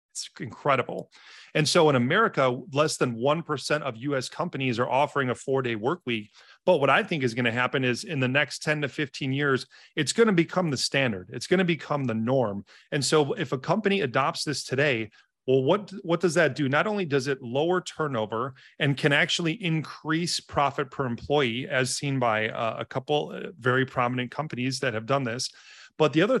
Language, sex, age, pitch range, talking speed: English, male, 30-49, 125-155 Hz, 200 wpm